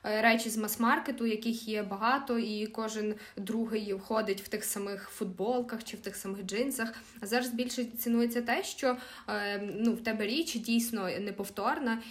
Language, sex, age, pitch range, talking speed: Ukrainian, female, 20-39, 195-230 Hz, 155 wpm